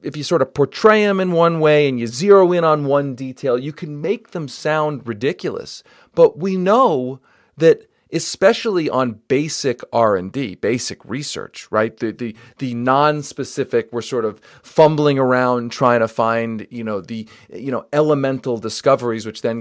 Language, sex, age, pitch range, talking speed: English, male, 40-59, 125-185 Hz, 165 wpm